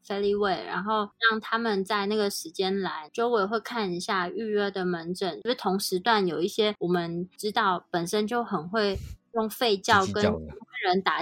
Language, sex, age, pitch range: Chinese, female, 20-39, 185-220 Hz